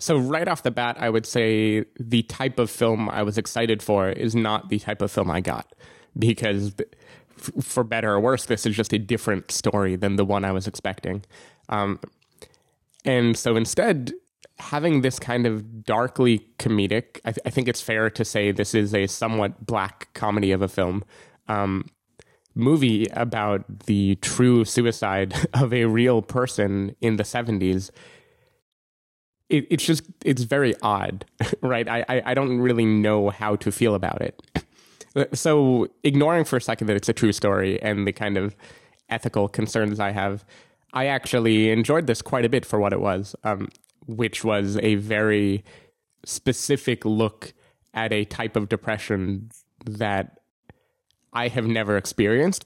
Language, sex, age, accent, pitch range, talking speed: English, male, 20-39, American, 100-120 Hz, 160 wpm